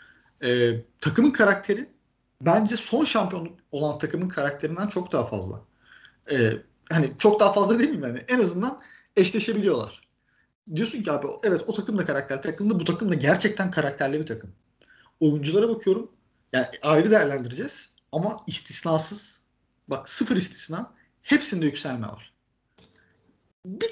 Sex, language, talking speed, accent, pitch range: male, Turkish, 135 wpm, native, 130-195 Hz